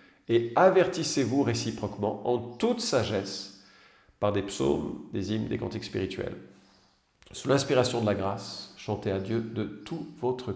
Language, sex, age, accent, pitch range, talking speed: French, male, 40-59, French, 110-145 Hz, 140 wpm